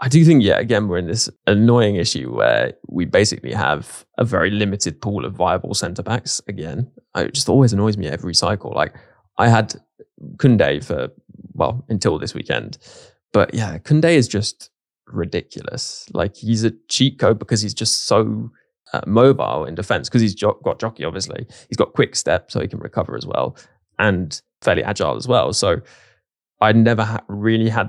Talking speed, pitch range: 180 wpm, 105-130 Hz